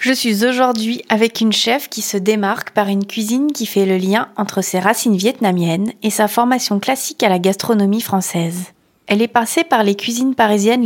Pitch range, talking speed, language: 190-225 Hz, 195 wpm, French